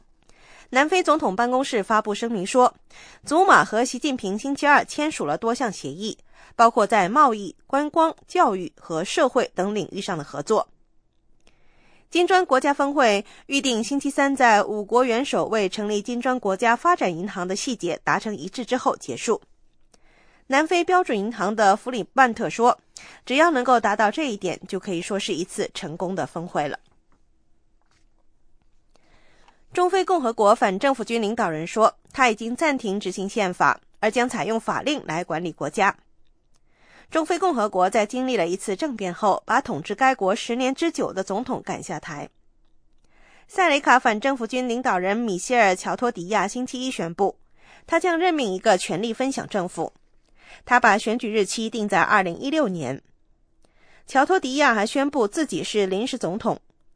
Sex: female